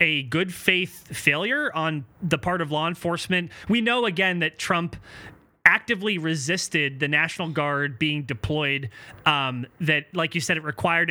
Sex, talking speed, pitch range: male, 155 wpm, 150-195 Hz